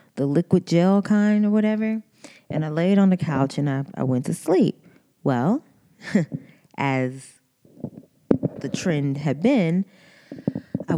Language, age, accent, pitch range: English, 20-39, American, 145-190 Hz